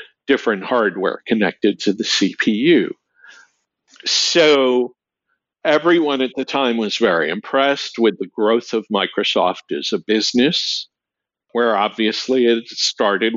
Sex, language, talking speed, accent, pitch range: male, English, 115 wpm, American, 115-145 Hz